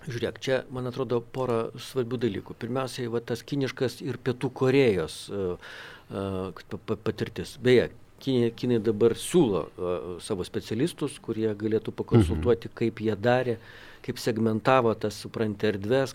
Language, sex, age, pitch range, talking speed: English, male, 50-69, 110-140 Hz, 130 wpm